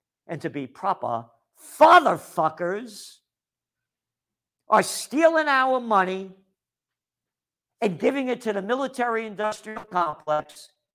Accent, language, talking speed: American, English, 95 wpm